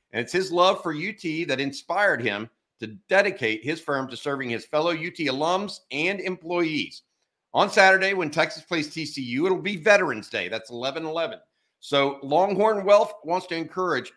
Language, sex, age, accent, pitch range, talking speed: English, male, 50-69, American, 130-175 Hz, 165 wpm